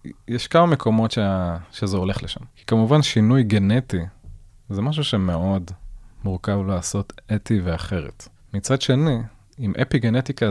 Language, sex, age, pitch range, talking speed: Hebrew, male, 20-39, 95-115 Hz, 130 wpm